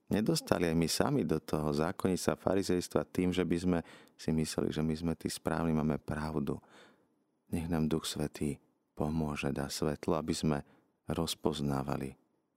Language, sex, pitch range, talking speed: Slovak, male, 70-80 Hz, 150 wpm